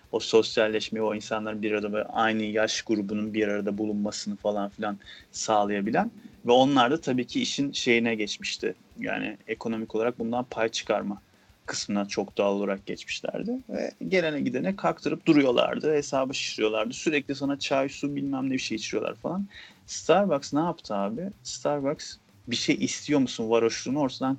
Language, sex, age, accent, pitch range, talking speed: Turkish, male, 30-49, native, 105-140 Hz, 155 wpm